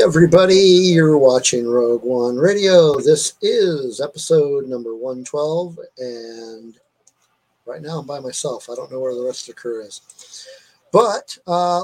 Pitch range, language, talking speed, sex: 130-185 Hz, English, 145 wpm, male